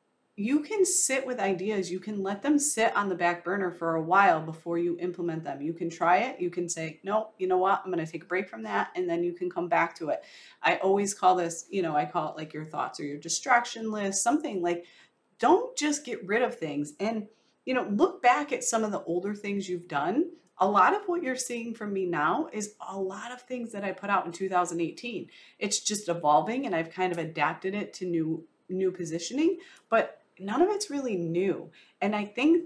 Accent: American